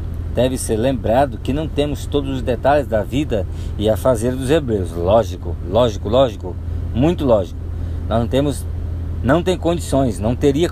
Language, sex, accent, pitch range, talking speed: Portuguese, male, Brazilian, 85-130 Hz, 160 wpm